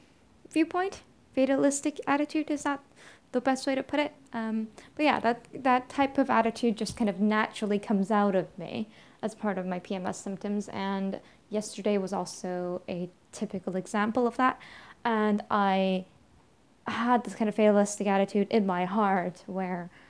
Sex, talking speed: female, 160 wpm